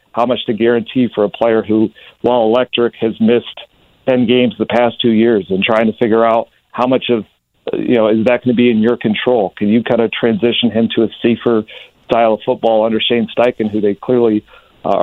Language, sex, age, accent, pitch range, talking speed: English, male, 50-69, American, 110-120 Hz, 220 wpm